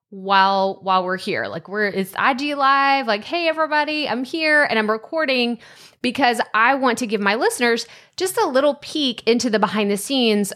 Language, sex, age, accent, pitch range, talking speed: English, female, 20-39, American, 190-245 Hz, 190 wpm